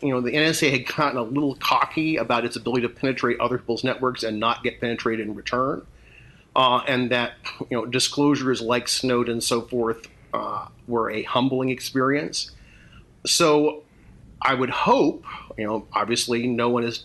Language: English